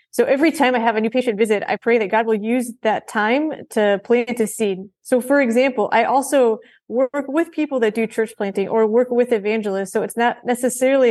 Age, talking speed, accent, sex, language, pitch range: 30-49, 220 wpm, American, female, English, 210-245 Hz